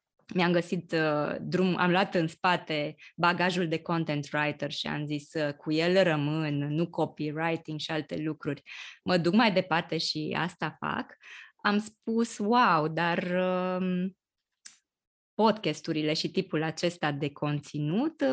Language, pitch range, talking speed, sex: Romanian, 155-195 Hz, 135 wpm, female